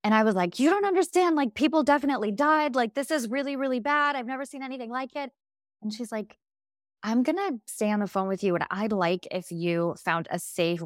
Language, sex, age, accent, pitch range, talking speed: English, female, 20-39, American, 165-215 Hz, 240 wpm